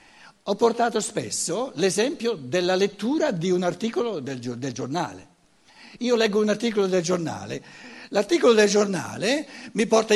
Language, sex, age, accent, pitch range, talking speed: Italian, male, 60-79, native, 170-235 Hz, 135 wpm